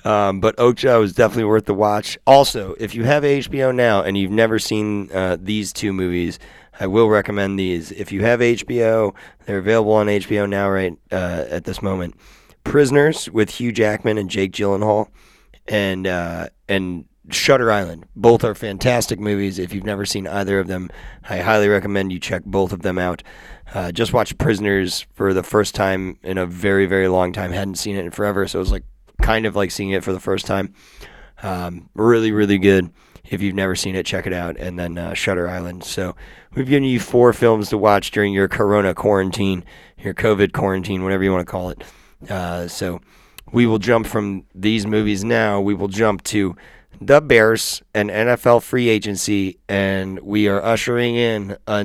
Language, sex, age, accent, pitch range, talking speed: English, male, 30-49, American, 95-110 Hz, 195 wpm